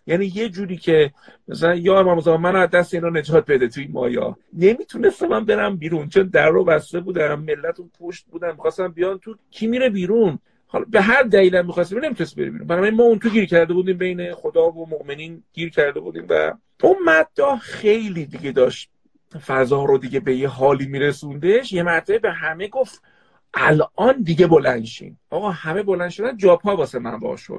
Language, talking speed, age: Persian, 175 wpm, 50-69